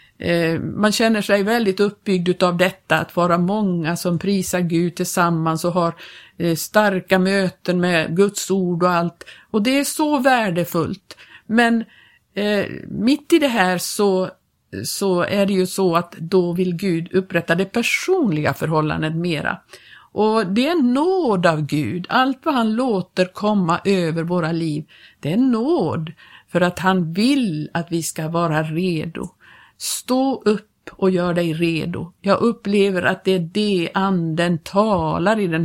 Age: 50-69